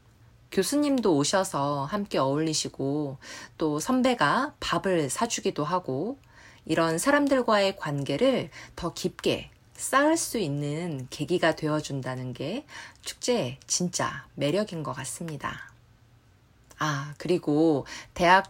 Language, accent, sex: Korean, native, female